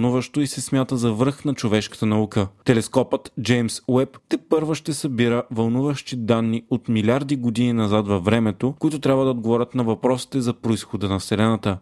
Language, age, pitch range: Bulgarian, 30-49, 110-135 Hz